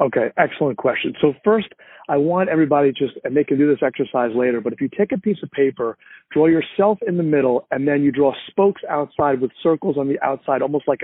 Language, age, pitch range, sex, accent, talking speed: English, 40-59, 135-180 Hz, male, American, 230 wpm